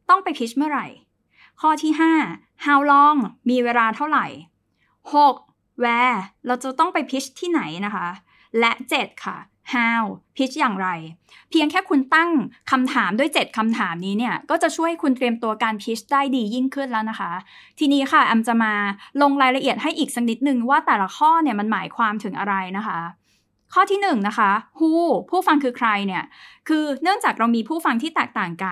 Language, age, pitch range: Thai, 20-39, 220-285 Hz